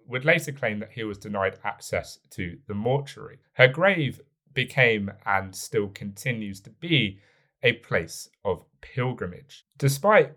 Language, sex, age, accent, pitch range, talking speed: English, male, 30-49, British, 100-140 Hz, 140 wpm